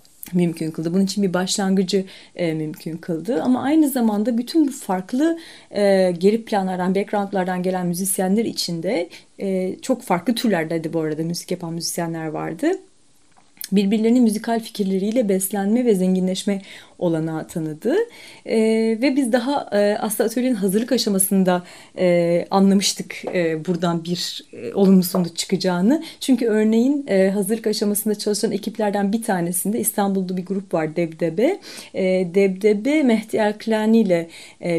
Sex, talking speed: female, 135 wpm